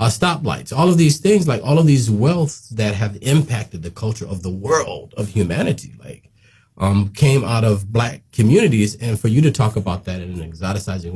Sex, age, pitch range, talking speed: male, 40-59, 100-140 Hz, 200 wpm